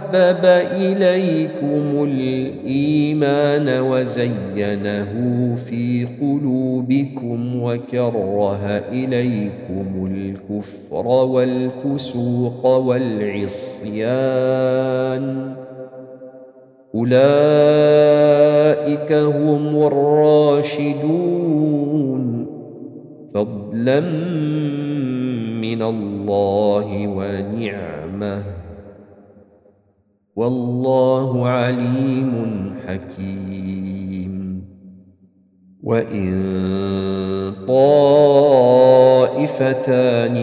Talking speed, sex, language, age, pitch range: 35 wpm, male, Arabic, 50-69, 100-135 Hz